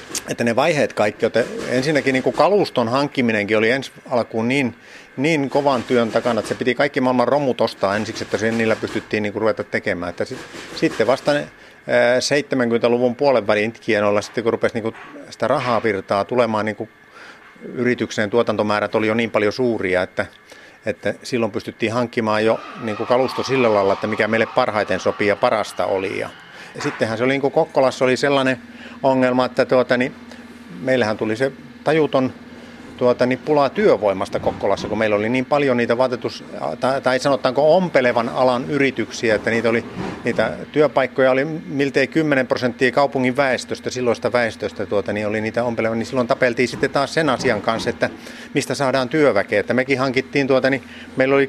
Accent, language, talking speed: native, Finnish, 170 wpm